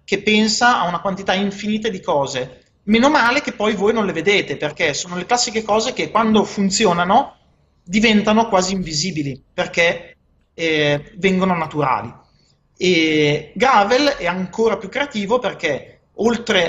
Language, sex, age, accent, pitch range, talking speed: Italian, male, 30-49, native, 160-210 Hz, 140 wpm